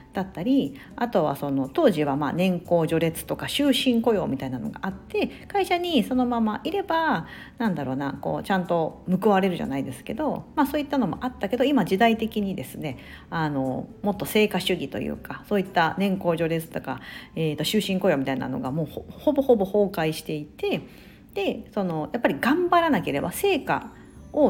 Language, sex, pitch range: Japanese, female, 160-260 Hz